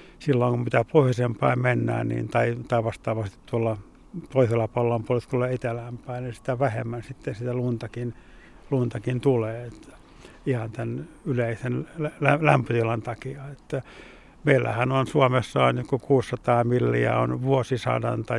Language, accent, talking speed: Finnish, native, 125 wpm